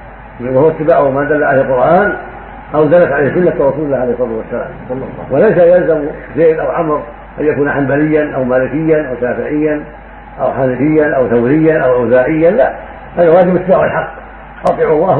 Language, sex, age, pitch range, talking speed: Arabic, male, 50-69, 145-175 Hz, 160 wpm